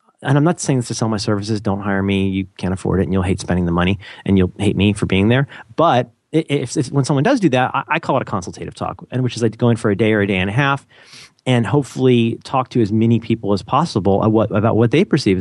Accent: American